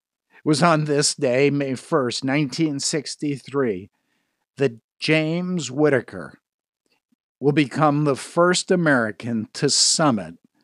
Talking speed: 95 wpm